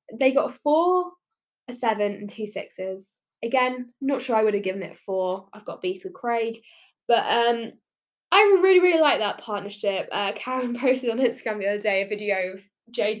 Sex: female